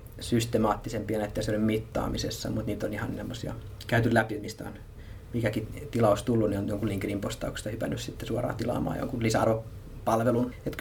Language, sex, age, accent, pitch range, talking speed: Finnish, male, 30-49, native, 105-120 Hz, 145 wpm